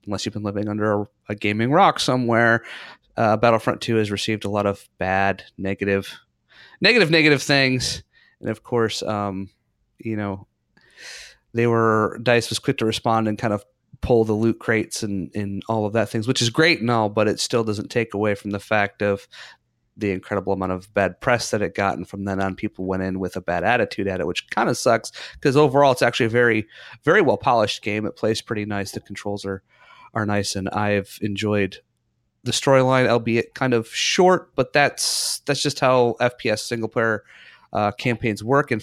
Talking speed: 200 wpm